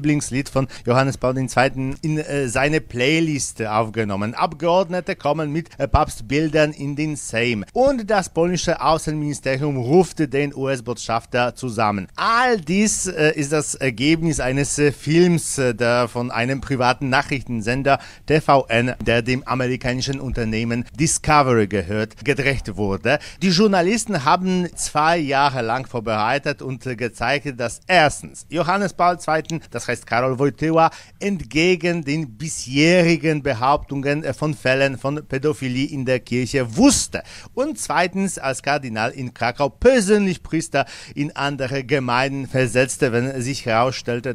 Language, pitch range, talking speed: German, 120-160 Hz, 125 wpm